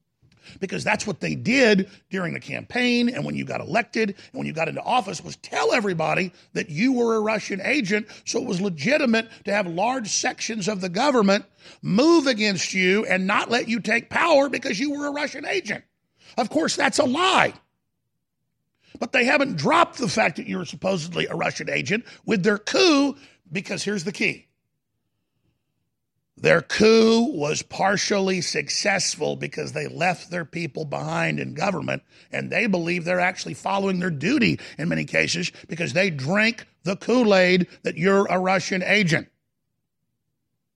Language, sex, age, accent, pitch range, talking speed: English, male, 50-69, American, 175-230 Hz, 165 wpm